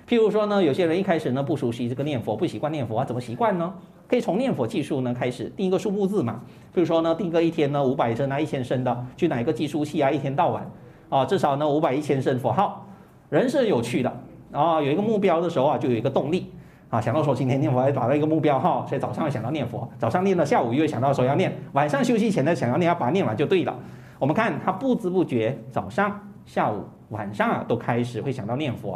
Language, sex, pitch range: Chinese, male, 125-195 Hz